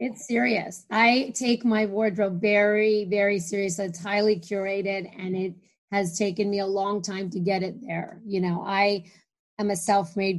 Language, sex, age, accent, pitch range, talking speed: English, female, 30-49, American, 195-220 Hz, 175 wpm